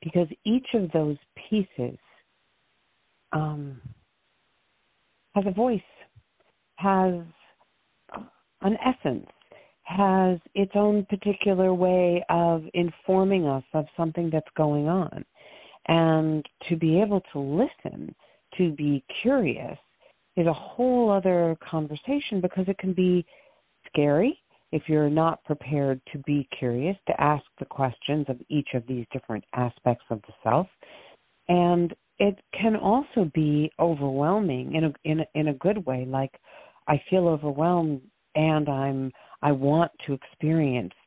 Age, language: 50-69, English